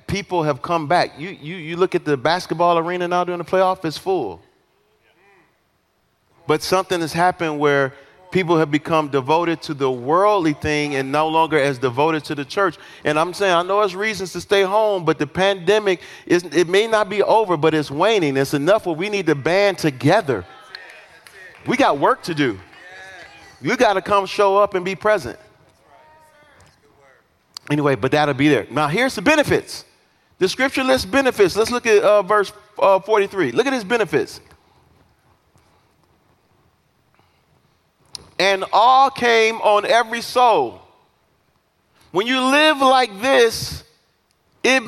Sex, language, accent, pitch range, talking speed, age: male, English, American, 175-255 Hz, 160 wpm, 40-59